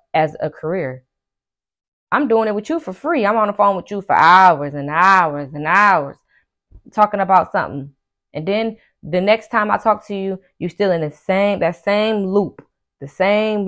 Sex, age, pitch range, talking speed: female, 20-39, 160-205 Hz, 195 wpm